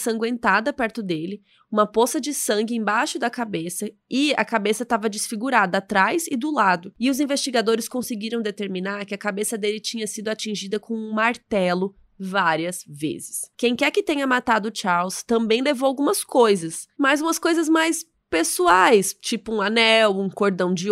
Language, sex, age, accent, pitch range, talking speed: Portuguese, female, 20-39, Brazilian, 200-255 Hz, 165 wpm